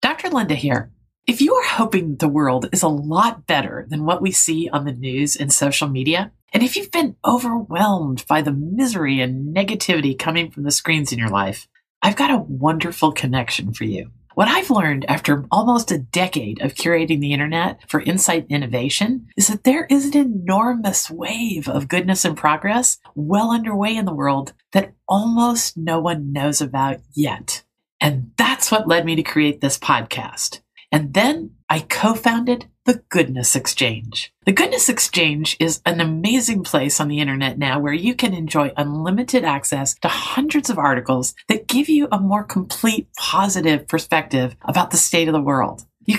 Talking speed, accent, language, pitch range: 175 wpm, American, English, 145-215 Hz